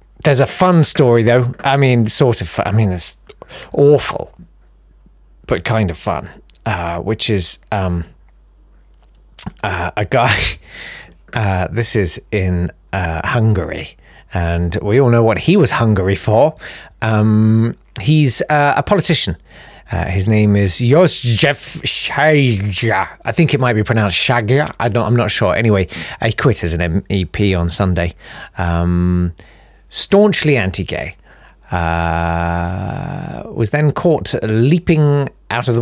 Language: English